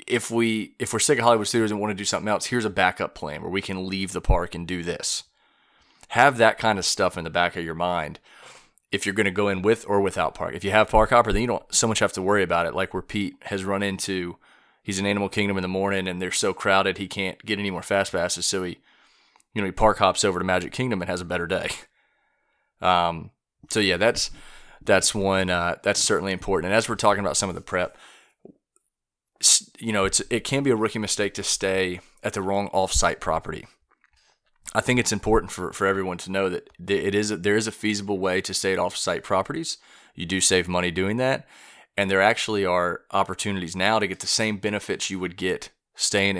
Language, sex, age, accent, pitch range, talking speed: English, male, 30-49, American, 95-105 Hz, 235 wpm